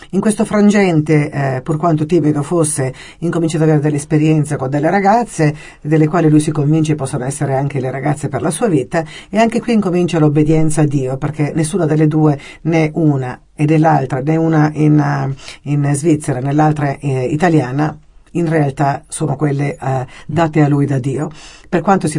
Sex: female